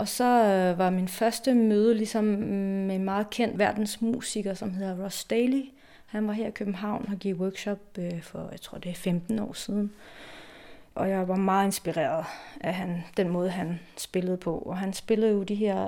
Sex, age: female, 30-49